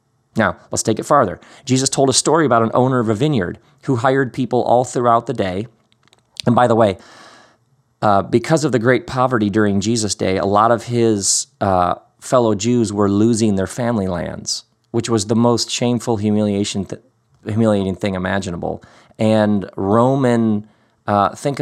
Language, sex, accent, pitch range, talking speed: English, male, American, 100-120 Hz, 170 wpm